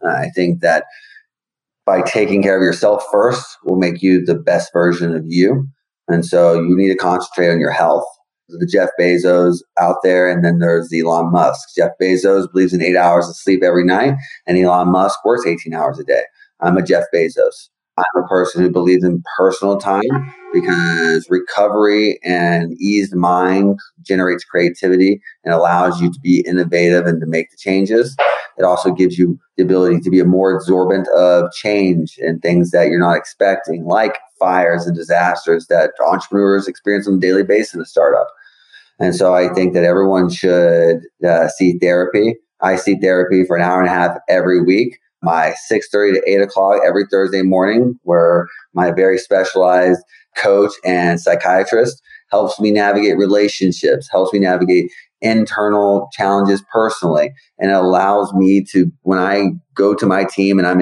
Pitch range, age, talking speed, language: 90-100 Hz, 30-49, 175 wpm, English